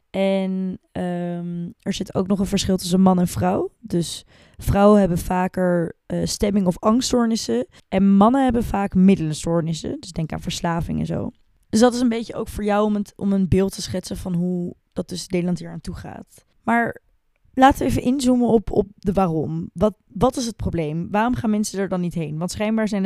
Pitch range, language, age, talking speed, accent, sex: 175-205 Hz, Dutch, 20-39, 205 wpm, Dutch, female